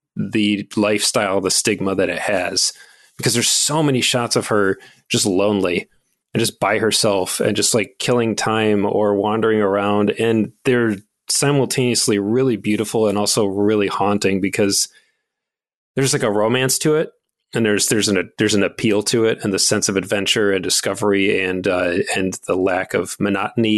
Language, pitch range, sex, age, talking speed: English, 100-115 Hz, male, 30-49, 170 wpm